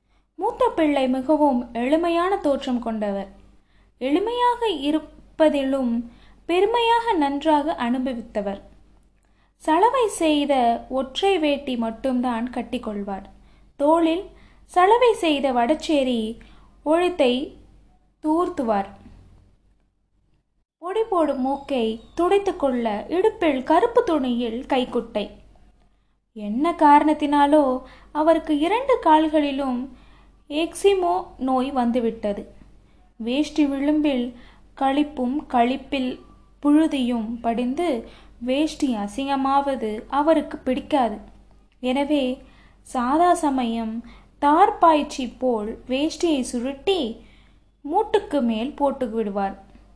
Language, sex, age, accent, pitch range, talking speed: Tamil, female, 20-39, native, 245-315 Hz, 55 wpm